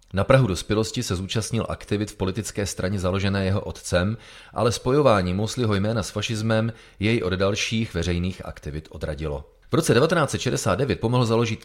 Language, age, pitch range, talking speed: Czech, 30-49, 90-115 Hz, 150 wpm